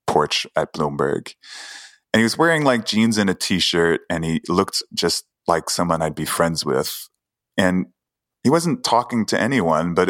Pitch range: 80-110 Hz